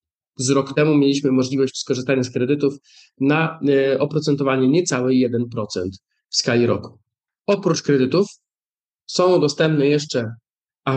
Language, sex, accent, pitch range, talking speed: Polish, male, native, 130-150 Hz, 115 wpm